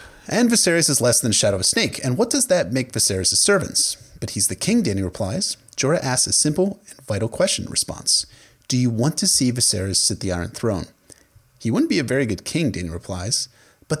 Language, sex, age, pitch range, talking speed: English, male, 30-49, 100-150 Hz, 220 wpm